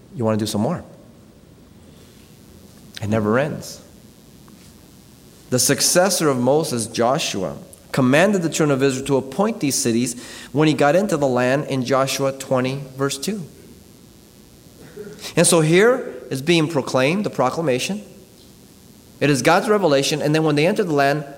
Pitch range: 135-185 Hz